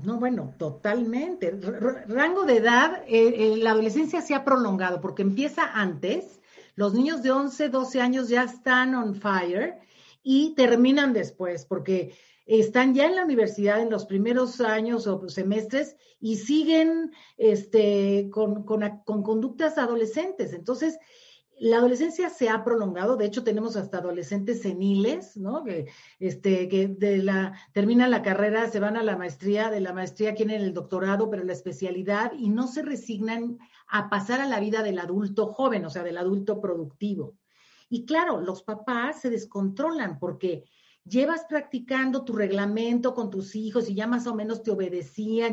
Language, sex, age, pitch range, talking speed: Spanish, female, 50-69, 200-255 Hz, 160 wpm